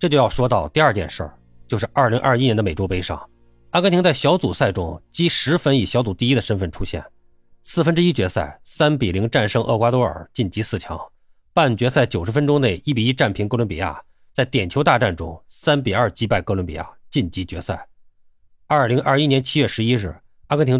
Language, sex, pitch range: Chinese, male, 95-140 Hz